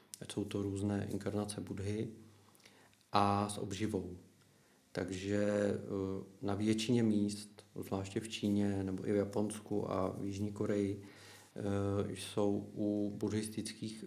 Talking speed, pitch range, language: 115 wpm, 100-105 Hz, Czech